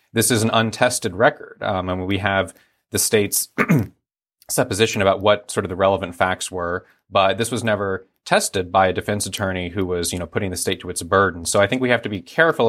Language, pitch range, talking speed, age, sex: English, 90-110 Hz, 220 wpm, 30-49, male